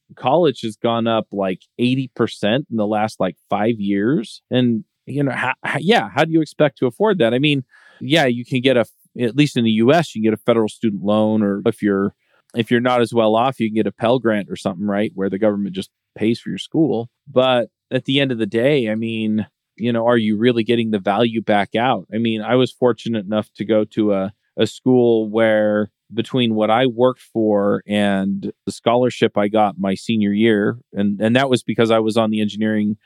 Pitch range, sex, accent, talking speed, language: 105-120 Hz, male, American, 225 wpm, English